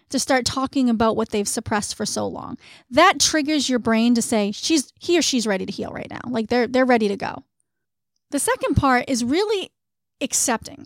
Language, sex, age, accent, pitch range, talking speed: English, female, 30-49, American, 225-275 Hz, 205 wpm